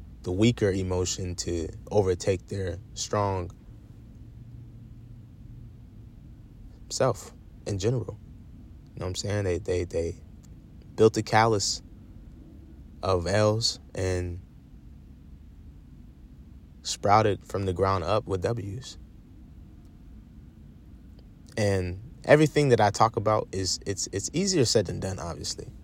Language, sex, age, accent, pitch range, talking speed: English, male, 20-39, American, 90-120 Hz, 105 wpm